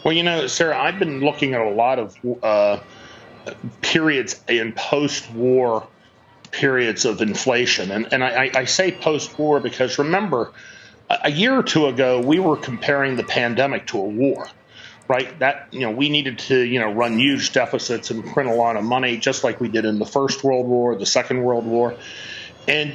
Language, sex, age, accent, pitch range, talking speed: English, male, 40-59, American, 120-145 Hz, 185 wpm